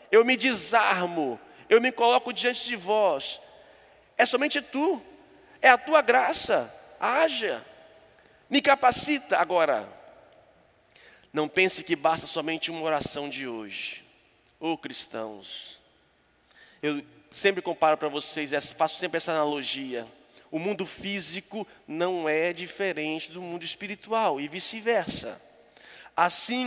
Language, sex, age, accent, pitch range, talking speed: Portuguese, male, 40-59, Brazilian, 165-225 Hz, 115 wpm